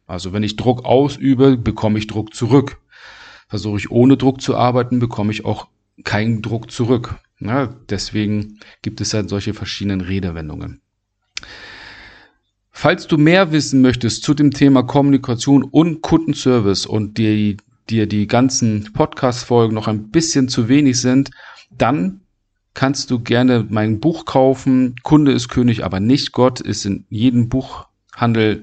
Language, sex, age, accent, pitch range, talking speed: German, male, 50-69, German, 105-130 Hz, 145 wpm